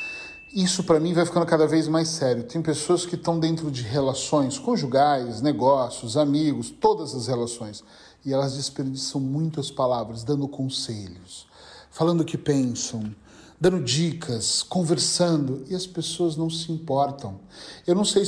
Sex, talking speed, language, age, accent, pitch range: male, 150 wpm, Portuguese, 40-59, Brazilian, 150-215 Hz